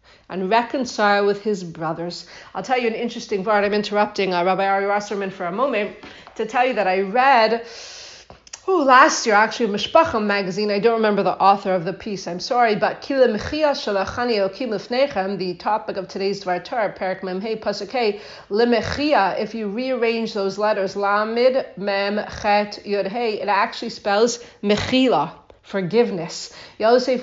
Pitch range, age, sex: 200-260 Hz, 40-59, female